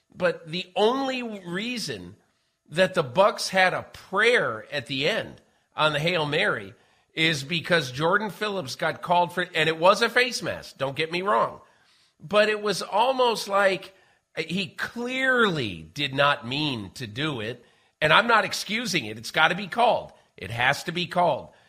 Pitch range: 135-185 Hz